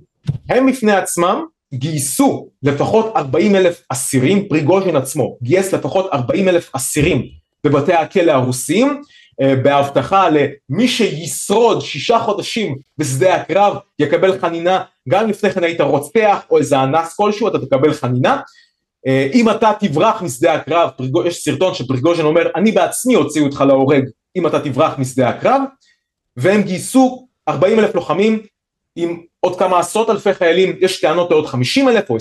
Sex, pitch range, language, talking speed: male, 140-210 Hz, Hebrew, 145 wpm